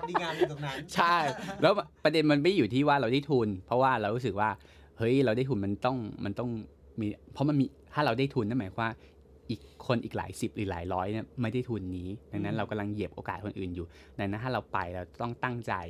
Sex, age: male, 20-39